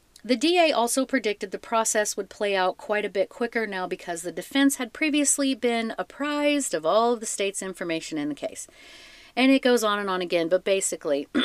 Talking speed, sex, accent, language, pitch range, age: 205 wpm, female, American, English, 180-275 Hz, 40-59